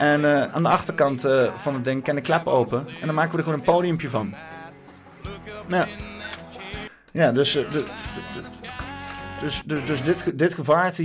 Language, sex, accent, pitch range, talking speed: Dutch, male, Dutch, 115-150 Hz, 175 wpm